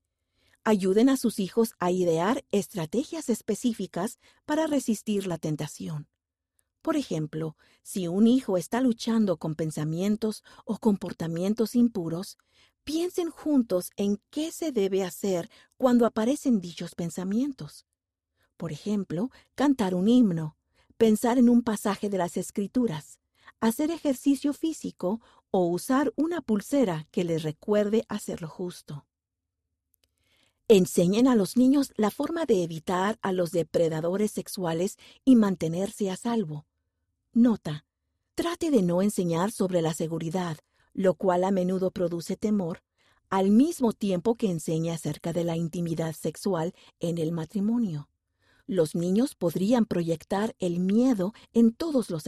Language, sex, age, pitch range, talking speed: Spanish, female, 50-69, 165-230 Hz, 130 wpm